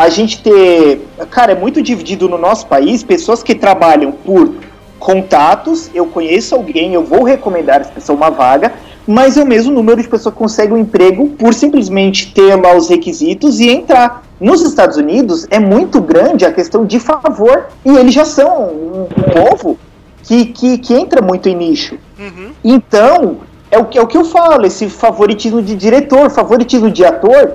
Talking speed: 175 wpm